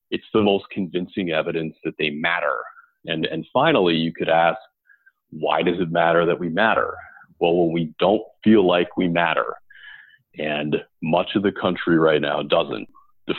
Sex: male